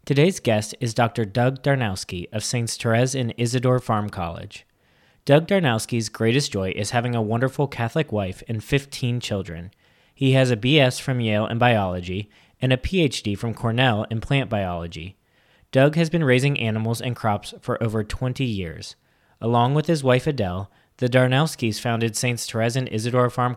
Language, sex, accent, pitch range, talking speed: English, male, American, 105-130 Hz, 170 wpm